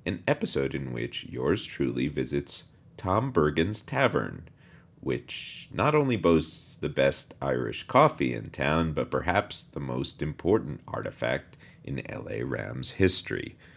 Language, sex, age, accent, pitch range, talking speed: English, male, 40-59, American, 75-105 Hz, 130 wpm